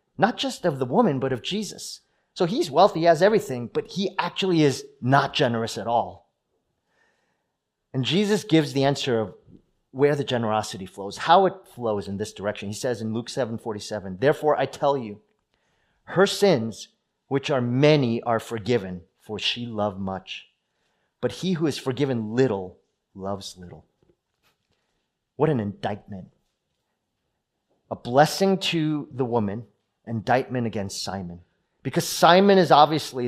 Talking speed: 150 wpm